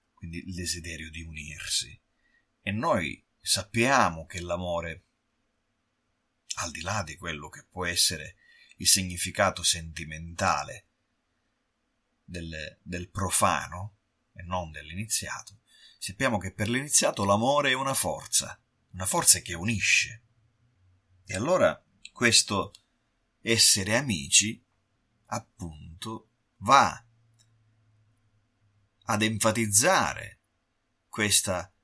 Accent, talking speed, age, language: native, 90 wpm, 30-49, Italian